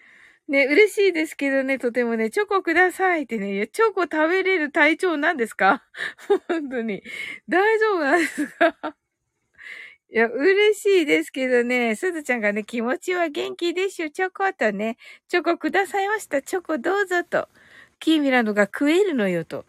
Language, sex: Japanese, female